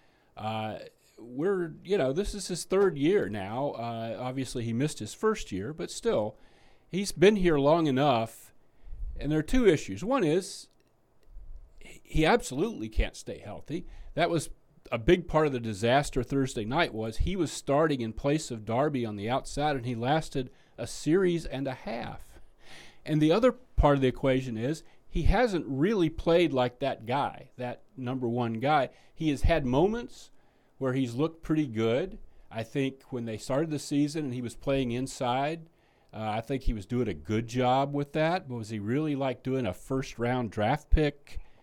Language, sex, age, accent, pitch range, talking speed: English, male, 40-59, American, 115-155 Hz, 180 wpm